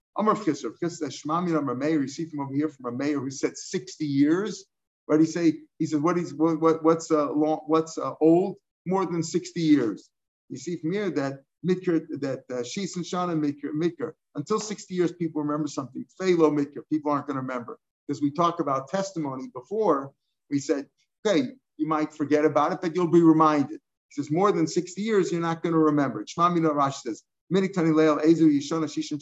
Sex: male